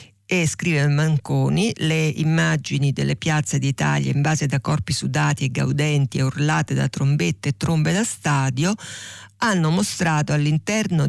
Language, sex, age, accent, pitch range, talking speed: Italian, female, 50-69, native, 140-165 Hz, 140 wpm